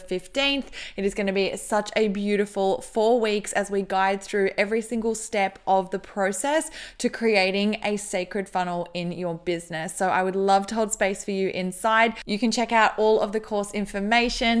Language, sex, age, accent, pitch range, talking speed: English, female, 20-39, Australian, 190-220 Hz, 195 wpm